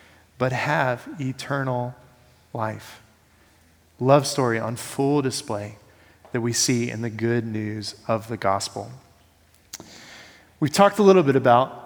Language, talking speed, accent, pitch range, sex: English, 125 wpm, American, 120-150 Hz, male